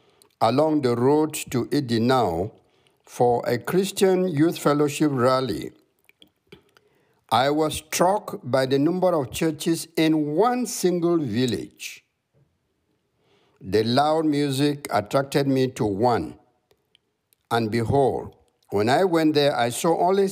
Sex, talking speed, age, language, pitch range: male, 115 wpm, 60-79, English, 125-170 Hz